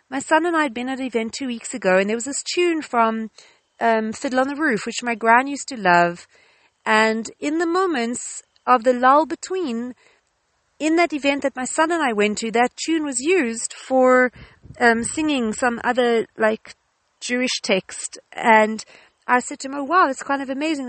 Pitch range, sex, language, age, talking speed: 225-290 Hz, female, English, 40-59, 200 wpm